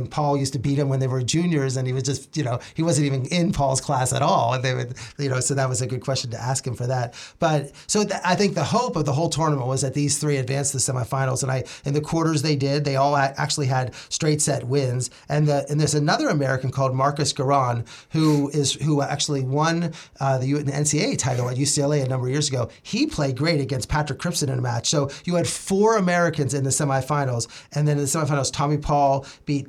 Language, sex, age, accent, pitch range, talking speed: English, male, 30-49, American, 135-165 Hz, 250 wpm